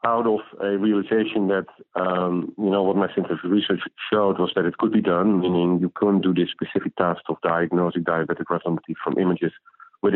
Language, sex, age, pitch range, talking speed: English, male, 50-69, 80-100 Hz, 195 wpm